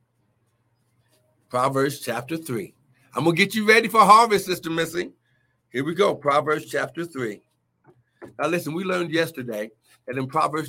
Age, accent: 60-79, American